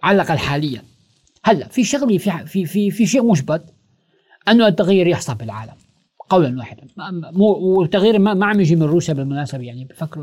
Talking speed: 175 wpm